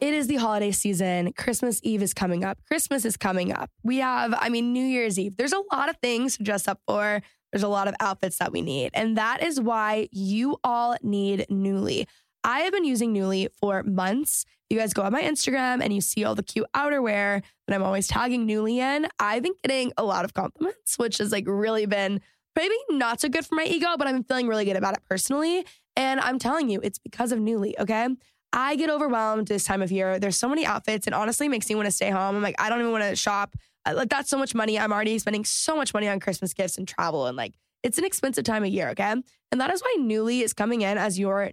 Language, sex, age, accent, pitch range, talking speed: English, female, 10-29, American, 200-255 Hz, 250 wpm